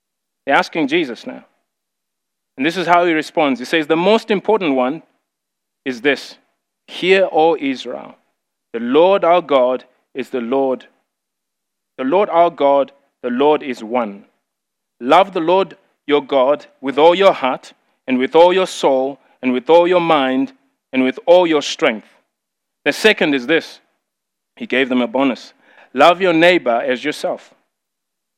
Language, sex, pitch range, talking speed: English, male, 130-175 Hz, 155 wpm